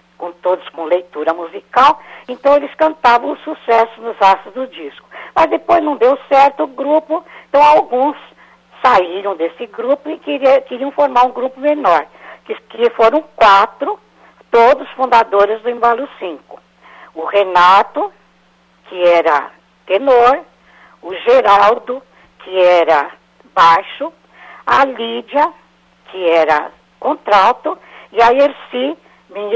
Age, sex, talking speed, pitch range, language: 60-79, female, 125 wpm, 205-295 Hz, Portuguese